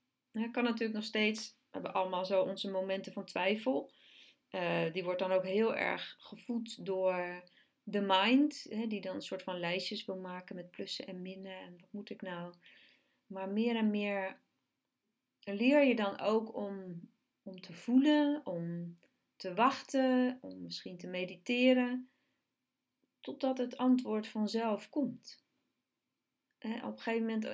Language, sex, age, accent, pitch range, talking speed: Dutch, female, 30-49, Dutch, 185-235 Hz, 150 wpm